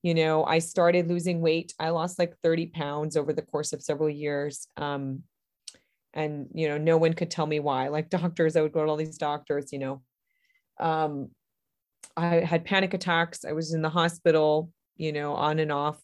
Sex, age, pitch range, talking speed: female, 30-49, 155-200 Hz, 200 wpm